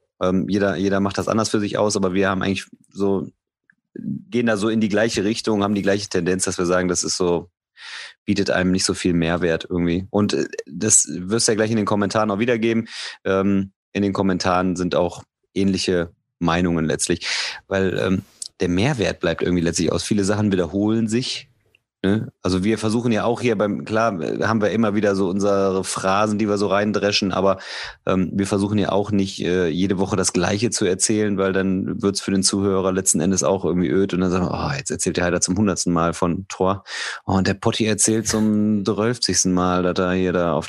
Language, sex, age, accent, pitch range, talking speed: German, male, 30-49, German, 90-110 Hz, 205 wpm